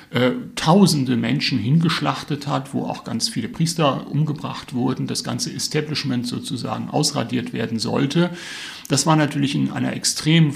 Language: German